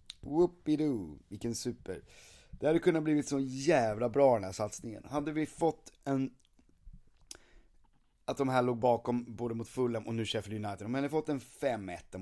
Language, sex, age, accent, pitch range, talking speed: Swedish, male, 30-49, native, 90-130 Hz, 165 wpm